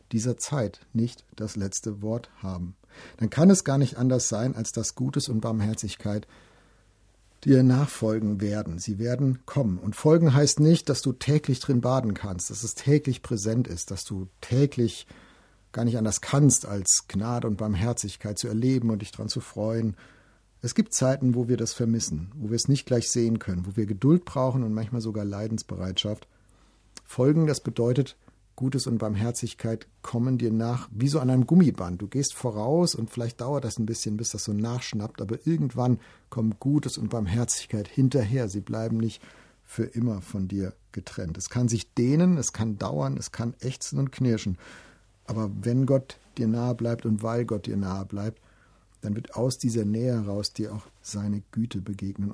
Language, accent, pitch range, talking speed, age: German, German, 105-125 Hz, 180 wpm, 50-69